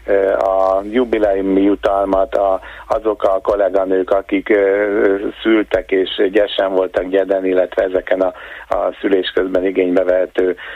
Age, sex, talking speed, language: 50-69, male, 105 wpm, Hungarian